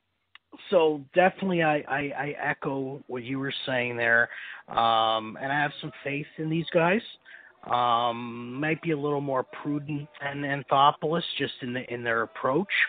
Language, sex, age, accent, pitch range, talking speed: English, male, 30-49, American, 115-150 Hz, 165 wpm